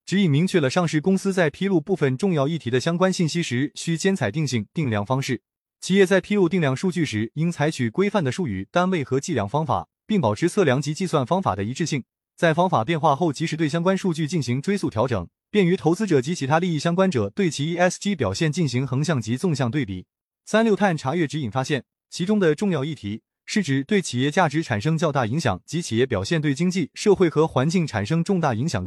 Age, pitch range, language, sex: 20-39, 130-185 Hz, Chinese, male